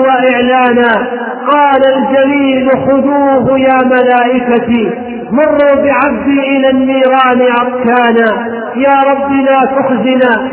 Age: 40-59